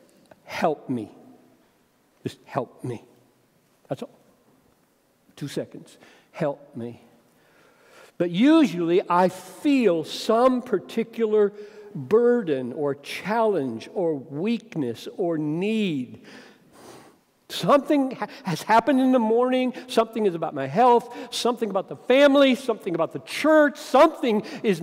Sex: male